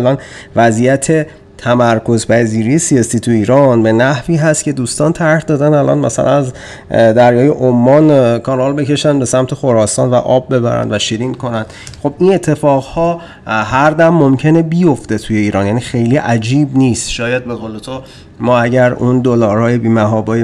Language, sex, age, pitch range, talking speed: Persian, male, 30-49, 110-140 Hz, 160 wpm